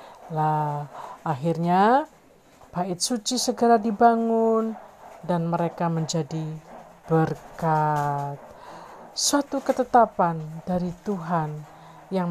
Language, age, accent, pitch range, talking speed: Indonesian, 40-59, native, 160-220 Hz, 75 wpm